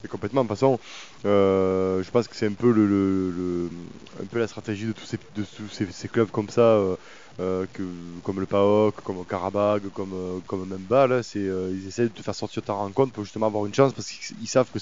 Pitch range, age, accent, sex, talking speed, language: 95-115 Hz, 20-39, French, male, 245 wpm, French